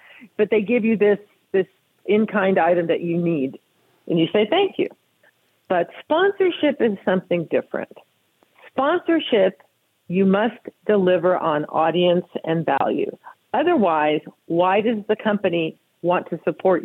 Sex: female